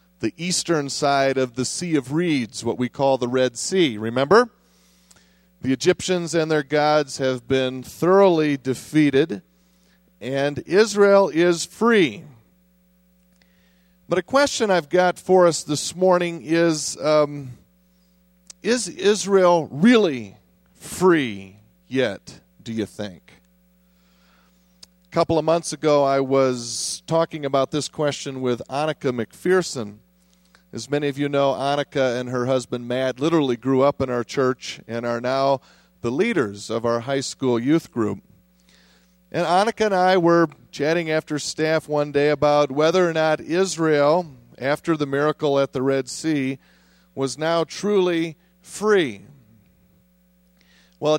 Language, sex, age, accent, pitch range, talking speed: English, male, 40-59, American, 125-175 Hz, 135 wpm